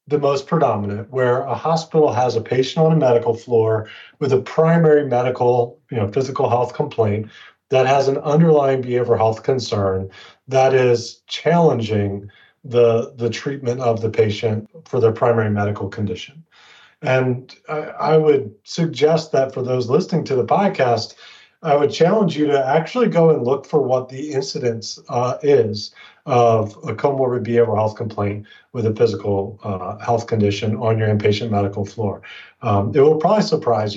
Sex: male